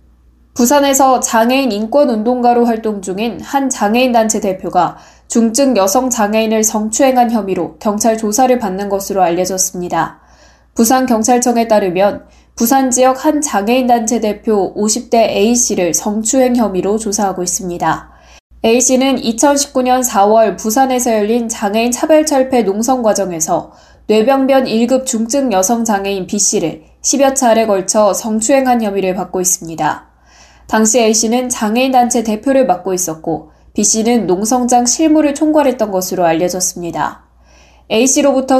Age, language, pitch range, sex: 10-29, Korean, 195-250 Hz, female